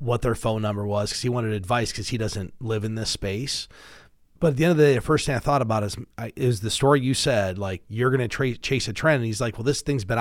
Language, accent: English, American